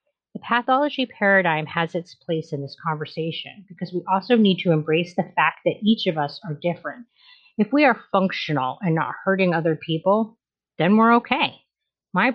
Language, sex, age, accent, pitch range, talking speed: English, female, 30-49, American, 165-220 Hz, 175 wpm